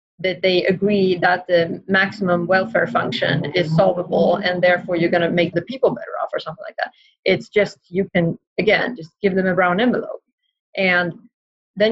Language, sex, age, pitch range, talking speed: English, female, 30-49, 170-200 Hz, 180 wpm